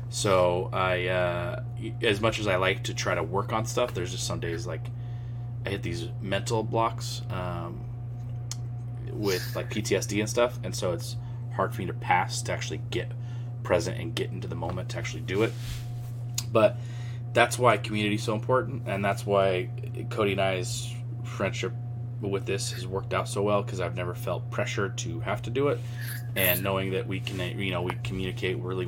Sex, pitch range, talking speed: male, 115-120 Hz, 195 wpm